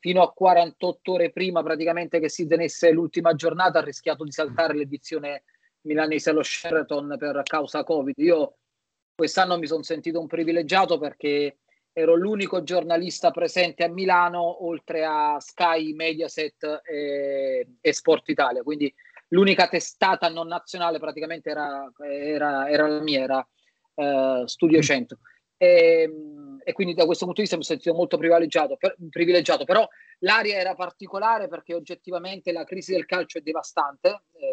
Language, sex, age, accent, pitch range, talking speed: Italian, male, 30-49, native, 155-180 Hz, 150 wpm